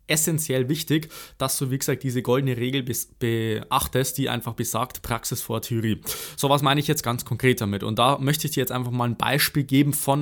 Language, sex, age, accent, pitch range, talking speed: German, male, 20-39, German, 120-145 Hz, 210 wpm